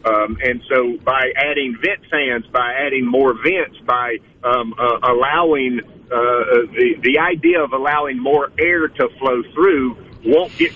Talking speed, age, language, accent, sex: 155 wpm, 50-69, English, American, male